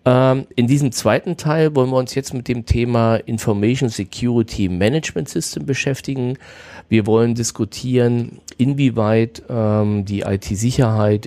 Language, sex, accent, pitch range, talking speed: German, male, German, 95-125 Hz, 115 wpm